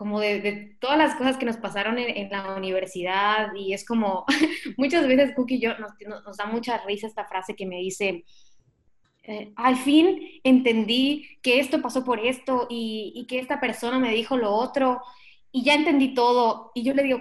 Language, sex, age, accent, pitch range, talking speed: Spanish, female, 20-39, Mexican, 205-270 Hz, 195 wpm